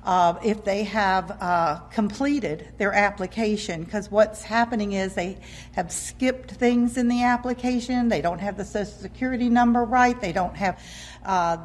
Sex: female